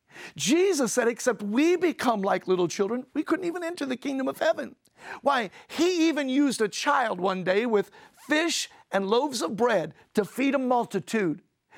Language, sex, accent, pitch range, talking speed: English, male, American, 185-260 Hz, 175 wpm